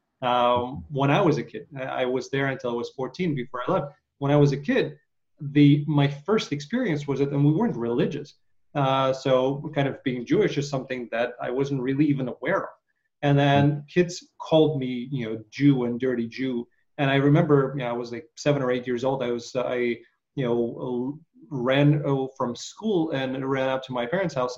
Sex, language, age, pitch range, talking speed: male, English, 30-49, 125-150 Hz, 210 wpm